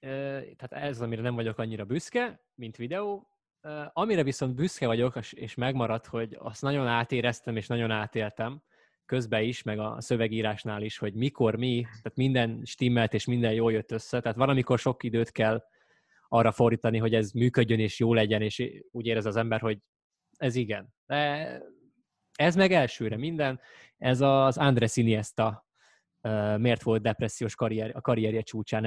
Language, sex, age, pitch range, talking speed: Hungarian, male, 20-39, 110-135 Hz, 160 wpm